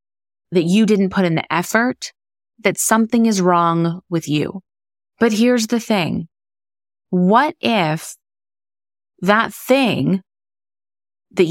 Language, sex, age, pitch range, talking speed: English, female, 30-49, 165-205 Hz, 115 wpm